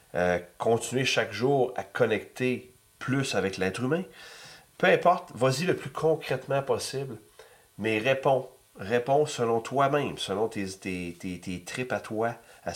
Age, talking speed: 40-59, 145 wpm